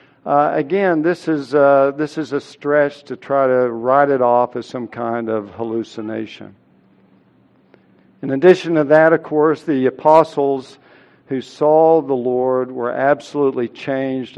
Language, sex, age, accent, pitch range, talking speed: English, male, 60-79, American, 135-190 Hz, 140 wpm